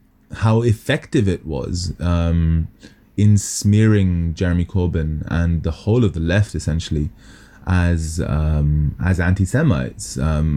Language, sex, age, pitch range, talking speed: English, male, 20-39, 85-100 Hz, 120 wpm